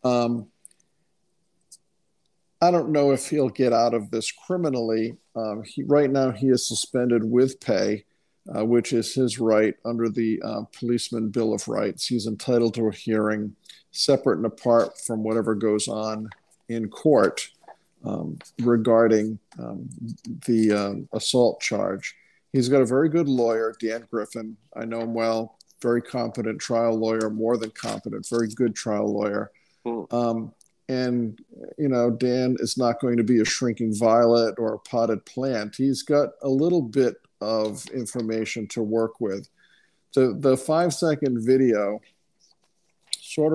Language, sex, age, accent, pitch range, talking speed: English, male, 50-69, American, 115-130 Hz, 150 wpm